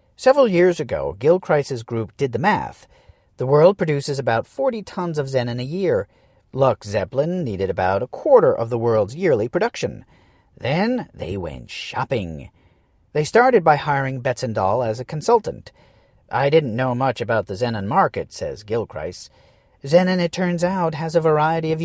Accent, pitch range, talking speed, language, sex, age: American, 125-180 Hz, 160 wpm, English, male, 40-59